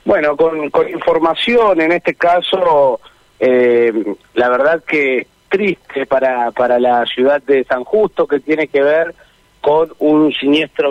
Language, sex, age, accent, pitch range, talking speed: Spanish, male, 40-59, Argentinian, 125-180 Hz, 145 wpm